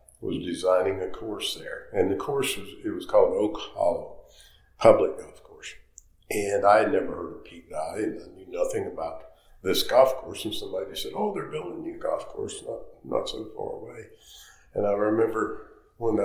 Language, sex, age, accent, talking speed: English, male, 50-69, American, 195 wpm